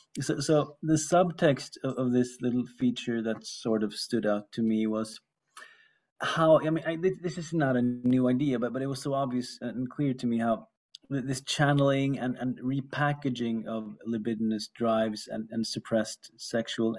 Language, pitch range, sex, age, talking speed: English, 115-135 Hz, male, 30-49, 175 wpm